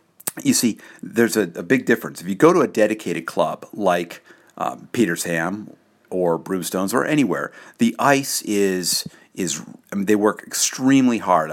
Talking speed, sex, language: 160 wpm, male, English